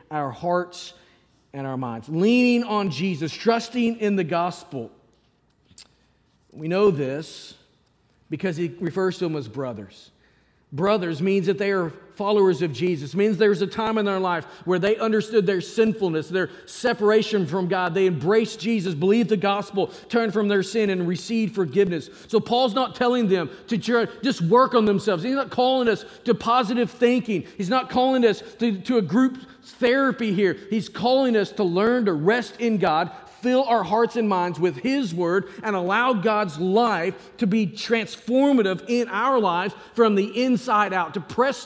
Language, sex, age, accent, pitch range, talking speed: English, male, 40-59, American, 155-220 Hz, 170 wpm